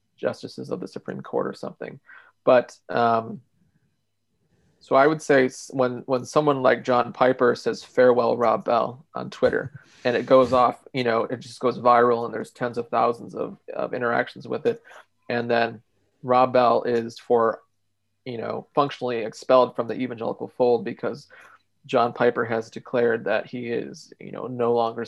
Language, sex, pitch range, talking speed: English, male, 115-130 Hz, 170 wpm